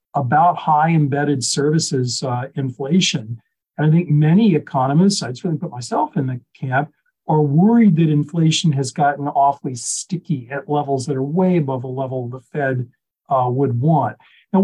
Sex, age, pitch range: male, 50-69, 135-170 Hz